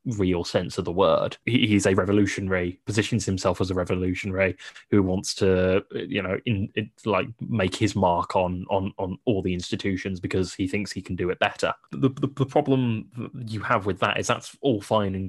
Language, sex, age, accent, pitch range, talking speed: English, male, 20-39, British, 95-115 Hz, 200 wpm